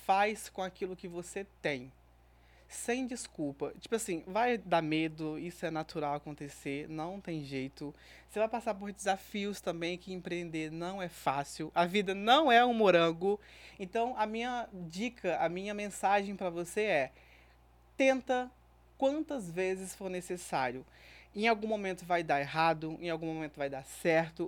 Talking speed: 155 wpm